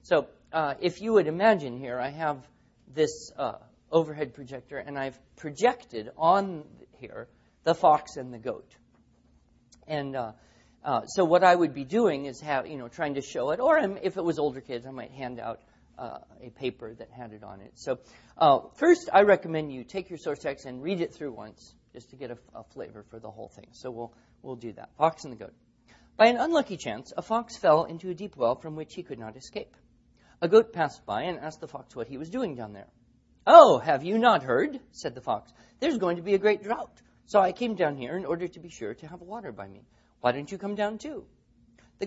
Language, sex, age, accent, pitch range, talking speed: English, male, 40-59, American, 125-195 Hz, 230 wpm